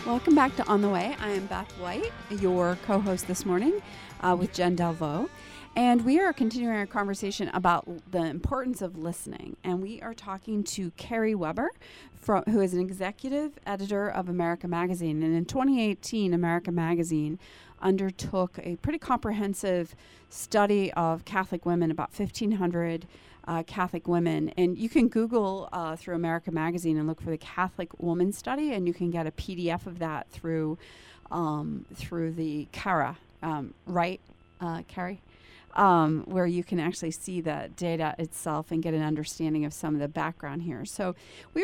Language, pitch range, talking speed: English, 165-205 Hz, 170 wpm